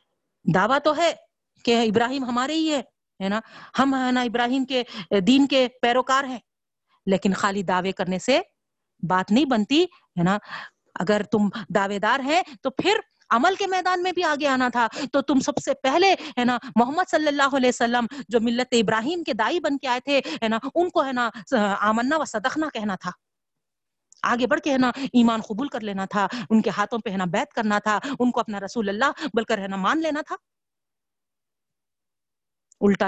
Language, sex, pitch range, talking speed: Urdu, female, 200-275 Hz, 180 wpm